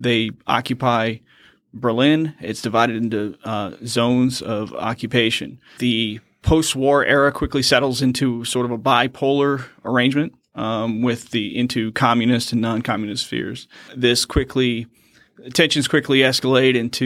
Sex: male